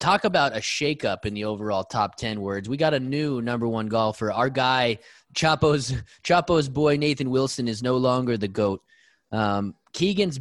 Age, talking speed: 20-39, 180 wpm